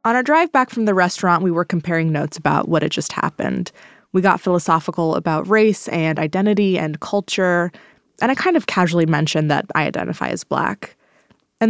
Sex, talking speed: female, 190 wpm